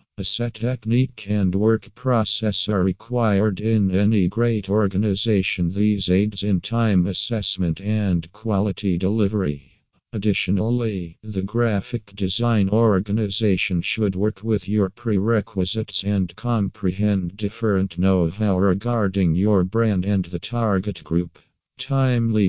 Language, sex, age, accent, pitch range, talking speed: English, male, 50-69, American, 95-110 Hz, 110 wpm